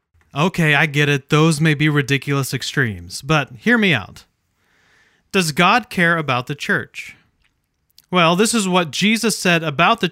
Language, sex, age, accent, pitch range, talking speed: English, male, 30-49, American, 150-190 Hz, 160 wpm